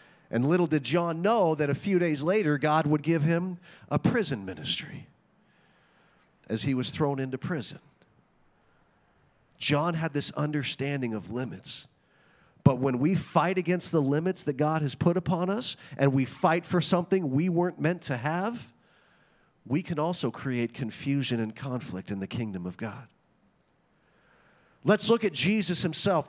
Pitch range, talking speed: 140-180 Hz, 155 wpm